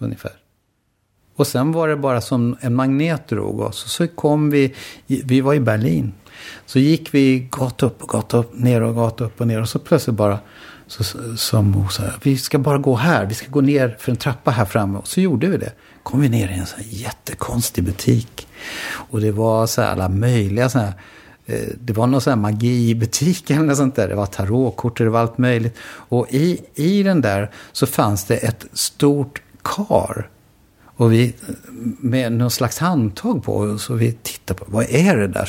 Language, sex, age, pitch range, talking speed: Swedish, male, 60-79, 110-135 Hz, 205 wpm